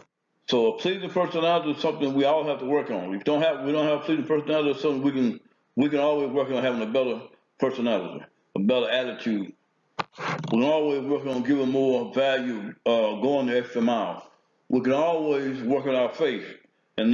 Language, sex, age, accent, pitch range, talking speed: English, male, 60-79, American, 130-160 Hz, 200 wpm